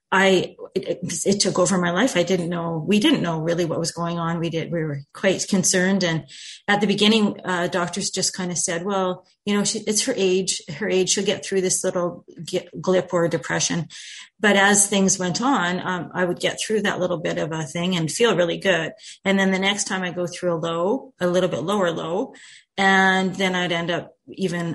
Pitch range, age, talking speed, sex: 170-190 Hz, 30-49, 230 wpm, female